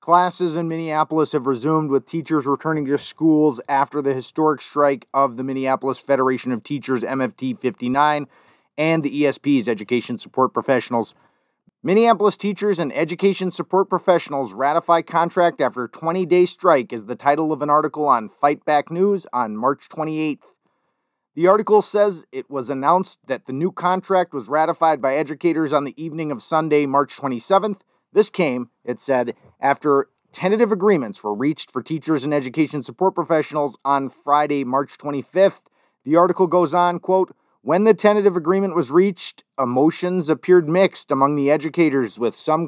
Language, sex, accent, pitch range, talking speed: English, male, American, 140-180 Hz, 155 wpm